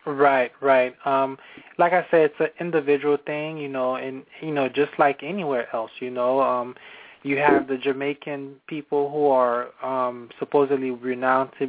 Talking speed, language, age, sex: 170 wpm, English, 20-39, male